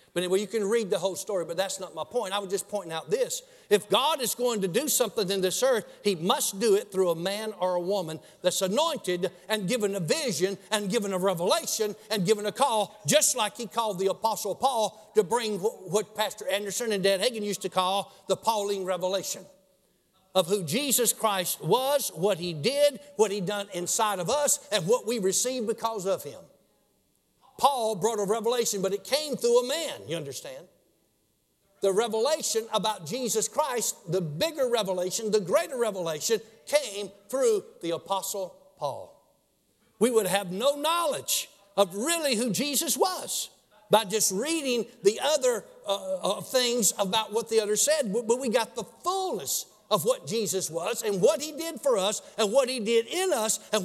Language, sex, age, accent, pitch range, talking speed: English, male, 60-79, American, 195-245 Hz, 185 wpm